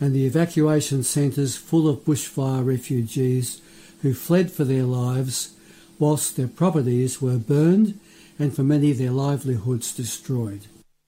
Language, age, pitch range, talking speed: English, 60-79, 135-170 Hz, 135 wpm